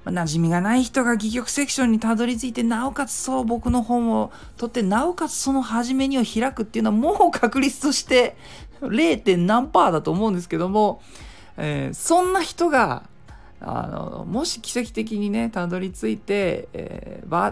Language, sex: Japanese, male